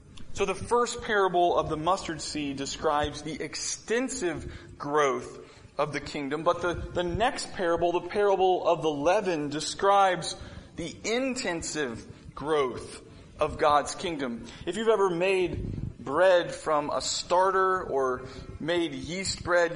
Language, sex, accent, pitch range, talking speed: English, male, American, 155-205 Hz, 135 wpm